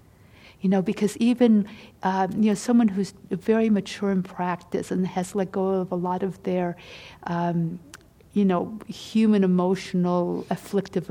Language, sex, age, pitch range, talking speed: English, female, 50-69, 175-210 Hz, 150 wpm